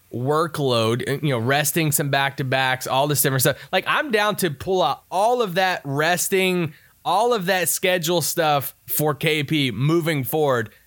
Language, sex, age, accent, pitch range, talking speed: English, male, 20-39, American, 130-170 Hz, 160 wpm